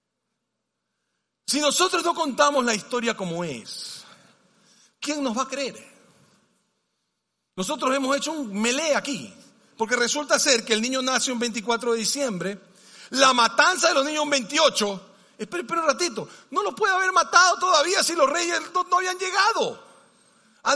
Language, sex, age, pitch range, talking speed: Spanish, male, 40-59, 215-285 Hz, 155 wpm